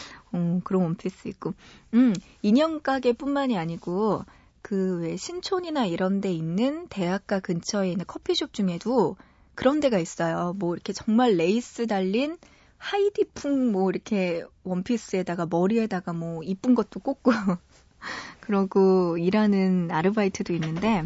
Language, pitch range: Korean, 180-240 Hz